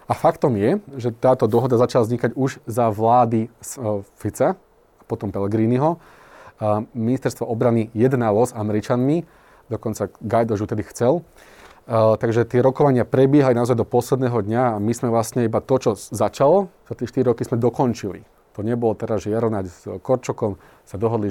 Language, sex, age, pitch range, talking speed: Slovak, male, 30-49, 105-125 Hz, 155 wpm